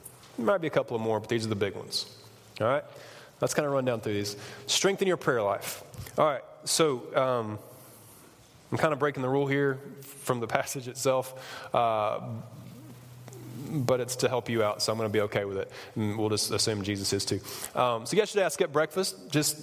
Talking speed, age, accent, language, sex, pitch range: 210 wpm, 20-39, American, English, male, 110-150 Hz